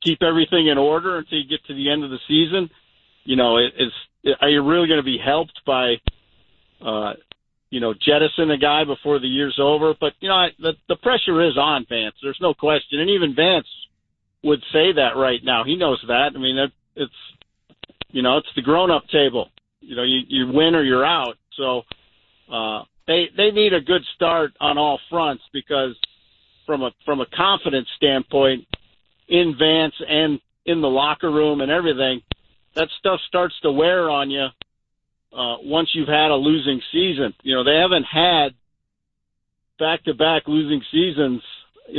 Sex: male